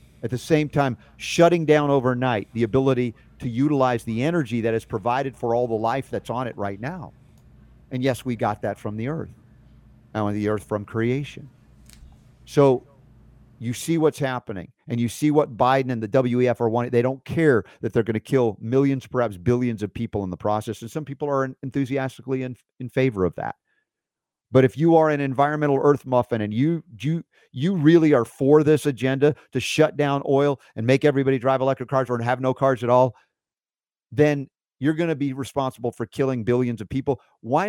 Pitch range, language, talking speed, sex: 115-140 Hz, English, 195 wpm, male